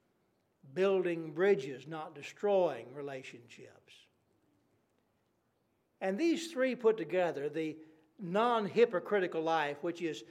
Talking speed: 85 wpm